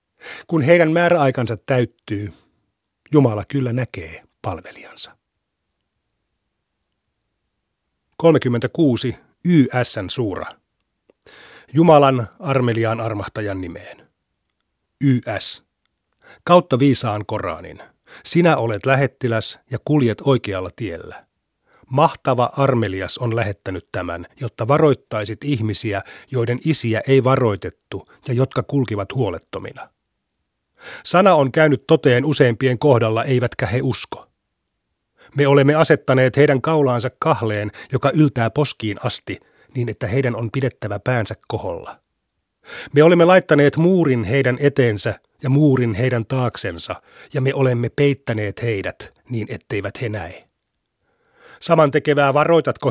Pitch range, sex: 110-140 Hz, male